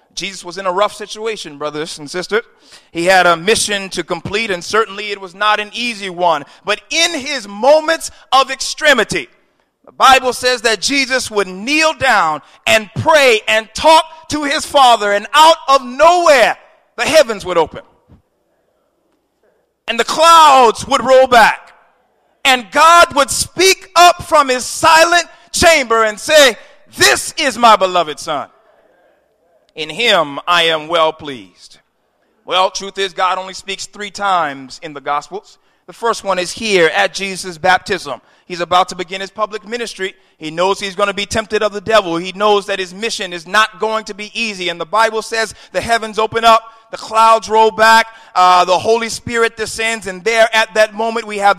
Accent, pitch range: American, 190-250 Hz